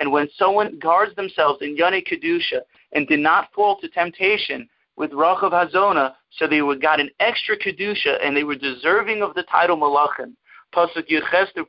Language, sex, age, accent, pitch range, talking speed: English, male, 30-49, American, 160-200 Hz, 180 wpm